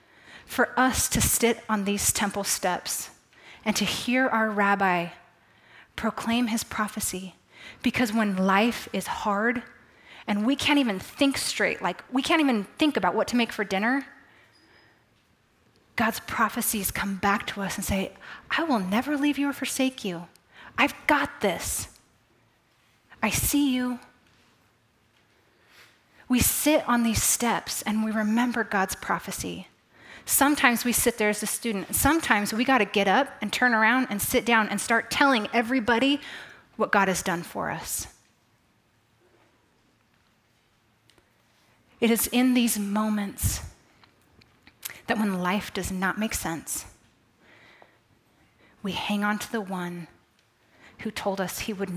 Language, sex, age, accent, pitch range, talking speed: English, female, 20-39, American, 195-245 Hz, 140 wpm